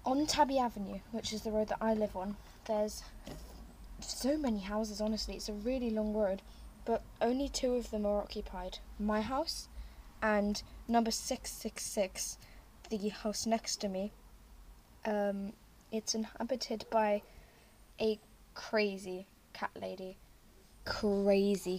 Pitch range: 195-225 Hz